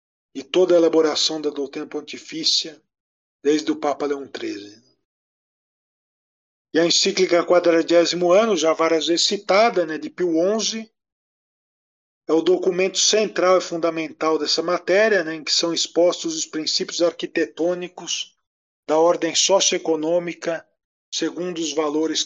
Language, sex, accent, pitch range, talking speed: Portuguese, male, Brazilian, 160-190 Hz, 125 wpm